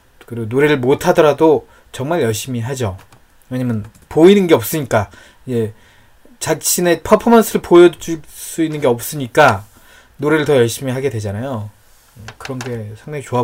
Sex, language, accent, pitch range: male, Korean, native, 105-145 Hz